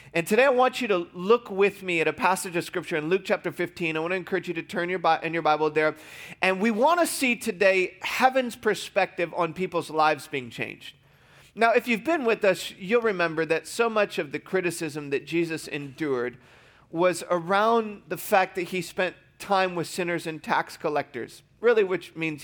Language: English